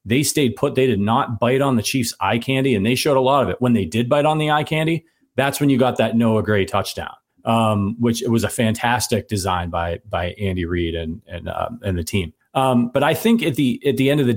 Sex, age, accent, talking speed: male, 40-59, American, 265 wpm